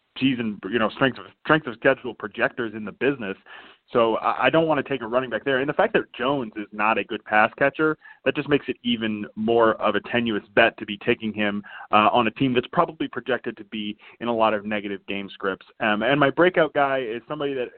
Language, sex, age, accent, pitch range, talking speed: English, male, 20-39, American, 110-135 Hz, 245 wpm